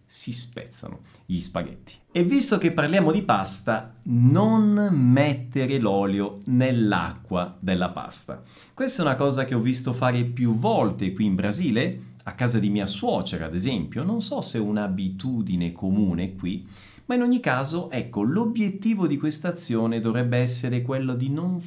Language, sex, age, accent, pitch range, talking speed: Italian, male, 40-59, native, 100-160 Hz, 160 wpm